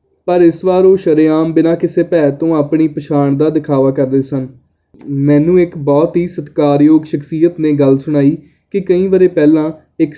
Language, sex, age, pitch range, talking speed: Punjabi, male, 20-39, 145-165 Hz, 165 wpm